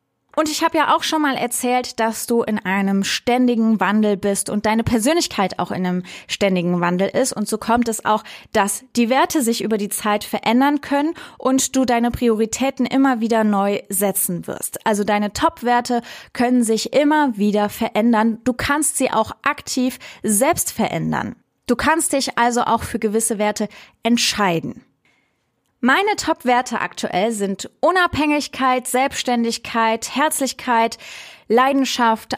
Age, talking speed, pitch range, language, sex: 20-39, 145 wpm, 210-250 Hz, German, female